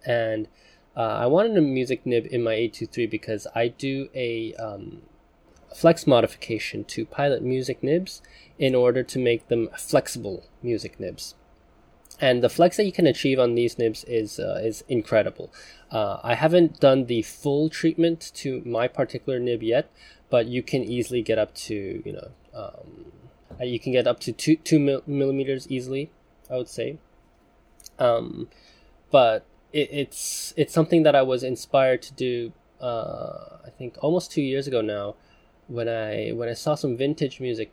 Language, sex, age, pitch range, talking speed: English, male, 20-39, 115-140 Hz, 165 wpm